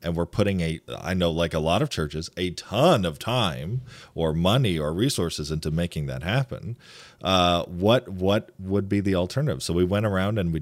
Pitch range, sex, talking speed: 80-105 Hz, male, 205 wpm